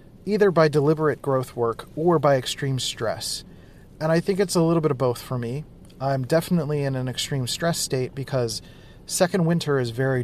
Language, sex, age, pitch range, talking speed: English, male, 40-59, 120-150 Hz, 190 wpm